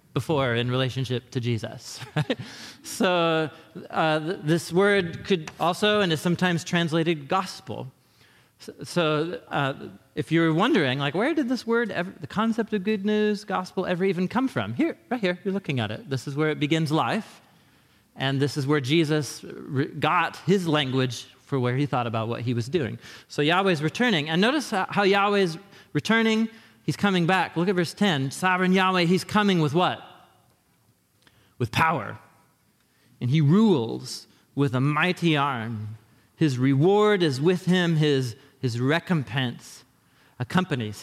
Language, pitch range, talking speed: English, 135-185 Hz, 155 wpm